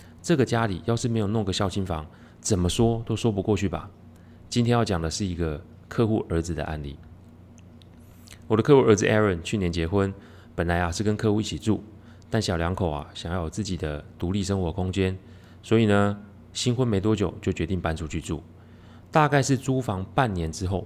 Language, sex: Chinese, male